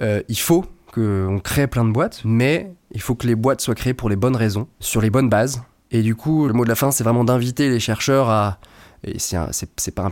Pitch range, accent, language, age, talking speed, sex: 105-130 Hz, French, French, 20-39, 265 wpm, male